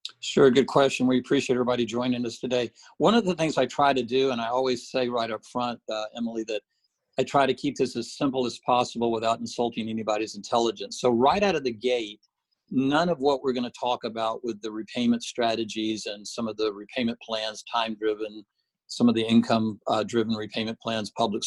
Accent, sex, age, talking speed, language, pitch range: American, male, 50-69, 205 wpm, English, 115-135 Hz